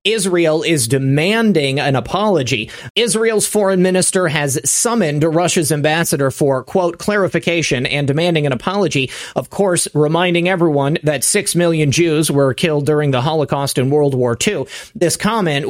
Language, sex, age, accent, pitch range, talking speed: English, male, 30-49, American, 145-190 Hz, 145 wpm